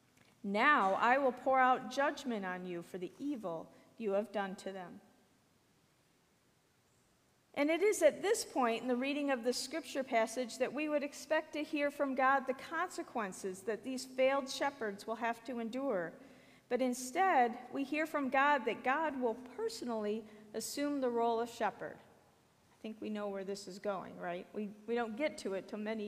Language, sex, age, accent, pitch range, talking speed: English, female, 50-69, American, 210-280 Hz, 180 wpm